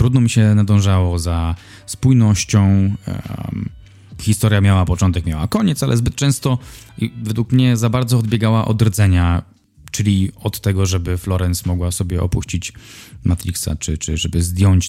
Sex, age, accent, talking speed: male, 20-39, native, 135 wpm